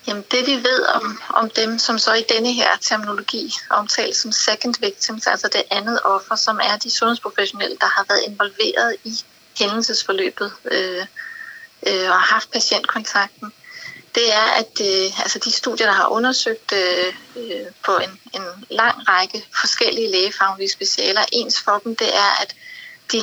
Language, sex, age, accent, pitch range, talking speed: Danish, female, 30-49, native, 195-240 Hz, 170 wpm